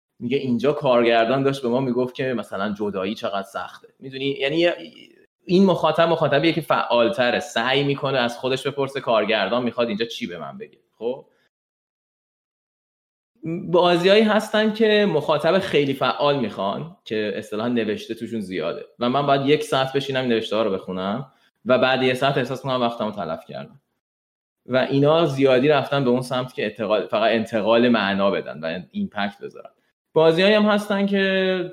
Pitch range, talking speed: 120-165 Hz, 155 wpm